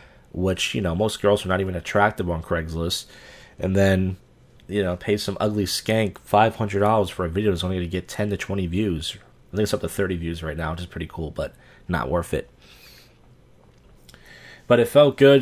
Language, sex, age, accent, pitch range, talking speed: English, male, 30-49, American, 90-120 Hz, 205 wpm